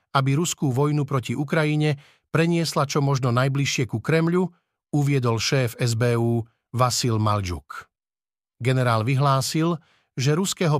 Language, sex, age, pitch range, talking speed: Slovak, male, 50-69, 130-160 Hz, 110 wpm